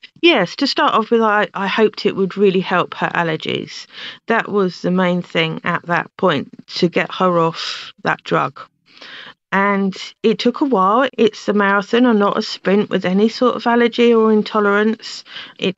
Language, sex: English, female